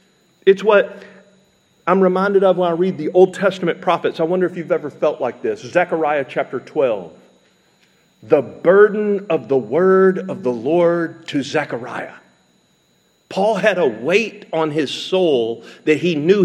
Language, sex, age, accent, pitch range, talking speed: English, male, 50-69, American, 150-195 Hz, 155 wpm